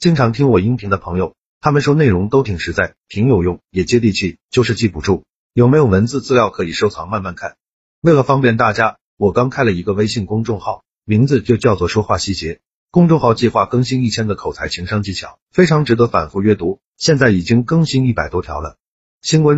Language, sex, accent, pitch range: Chinese, male, native, 95-130 Hz